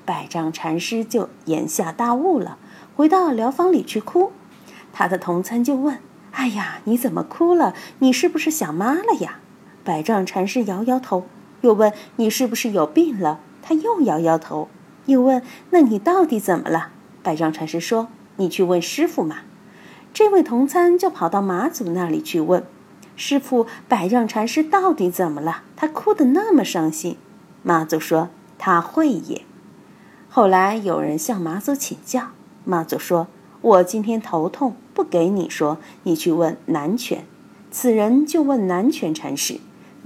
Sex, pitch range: female, 180-295 Hz